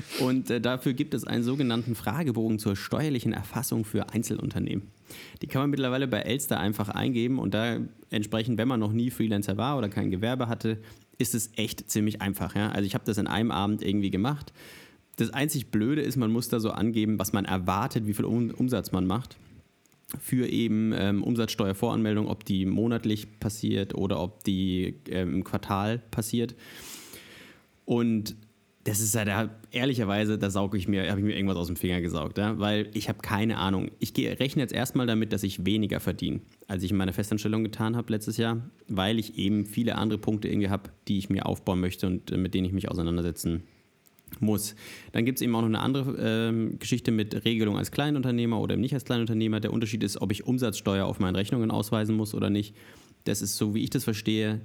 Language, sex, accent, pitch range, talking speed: German, male, German, 100-120 Hz, 200 wpm